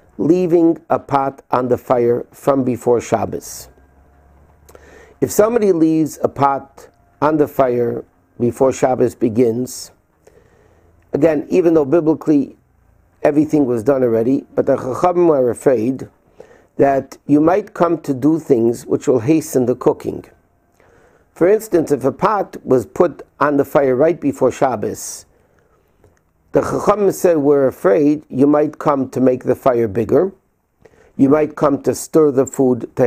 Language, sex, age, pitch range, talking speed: English, male, 50-69, 125-160 Hz, 145 wpm